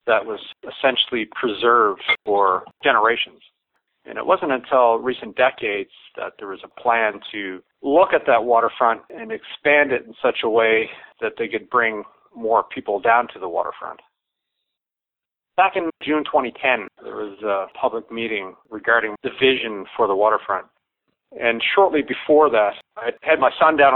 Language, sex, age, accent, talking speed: English, male, 40-59, American, 160 wpm